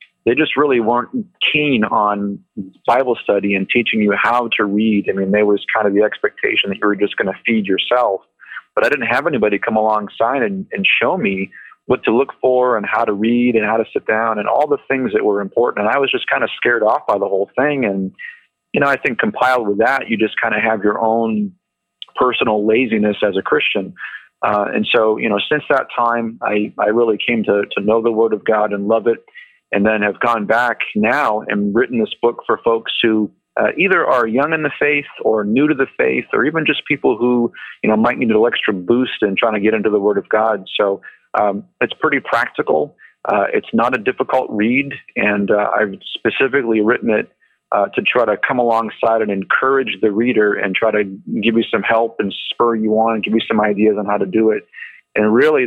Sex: male